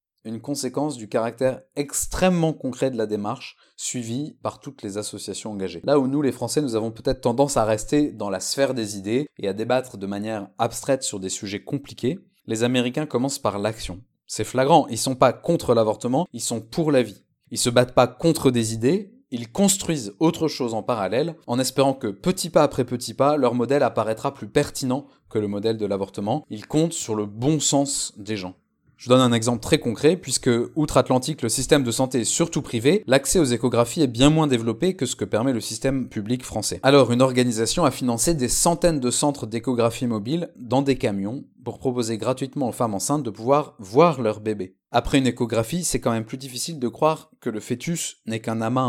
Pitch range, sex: 115-145 Hz, male